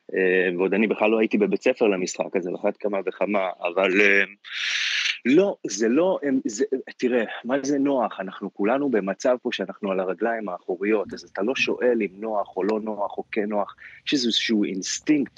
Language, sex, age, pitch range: Hebrew, male, 30-49, 95-115 Hz